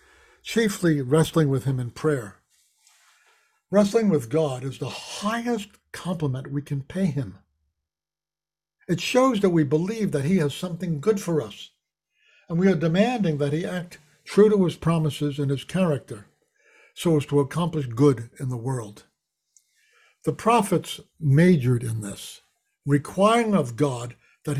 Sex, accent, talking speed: male, American, 145 wpm